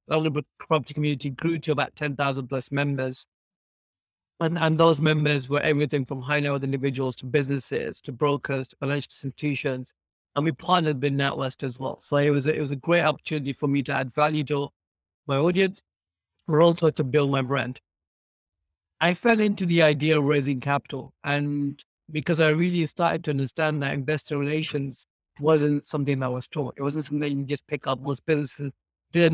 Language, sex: English, male